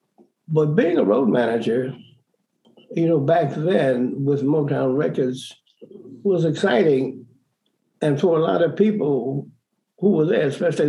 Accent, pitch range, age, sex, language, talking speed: American, 125-165 Hz, 60-79, male, English, 130 wpm